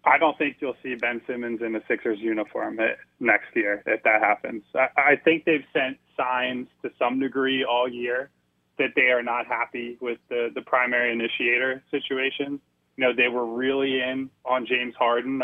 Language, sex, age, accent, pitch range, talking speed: English, male, 20-39, American, 115-145 Hz, 185 wpm